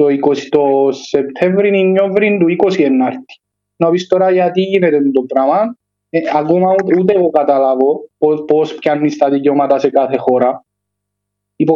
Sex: male